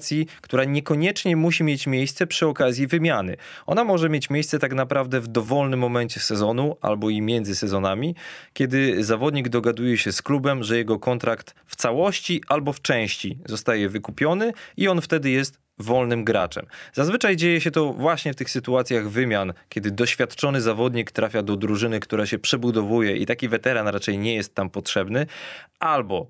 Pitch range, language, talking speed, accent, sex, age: 110-145 Hz, Polish, 160 wpm, native, male, 20-39